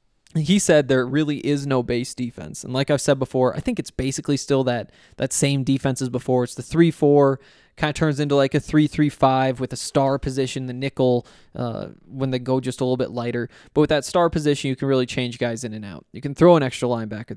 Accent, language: American, English